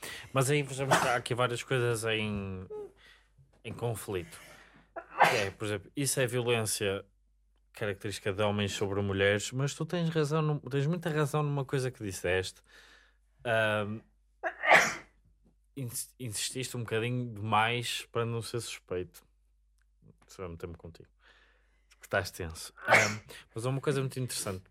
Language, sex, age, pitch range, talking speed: English, male, 20-39, 100-130 Hz, 135 wpm